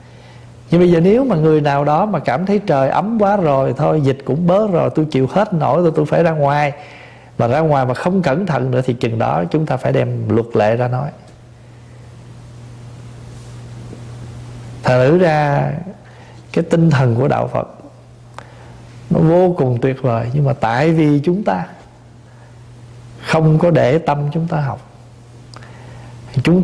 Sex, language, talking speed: male, Vietnamese, 170 wpm